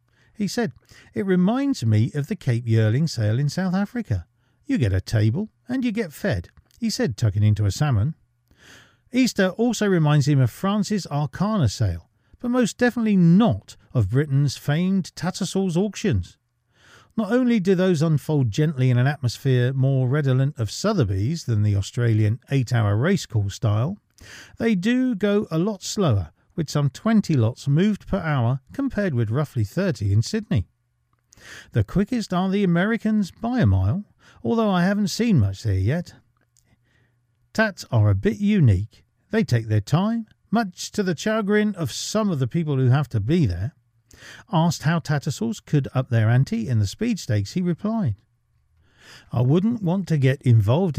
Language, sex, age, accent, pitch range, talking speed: English, male, 40-59, British, 115-195 Hz, 165 wpm